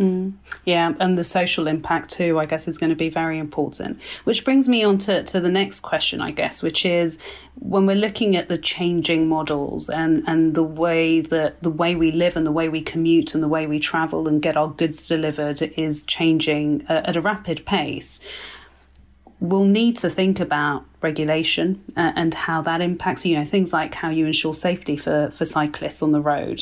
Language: English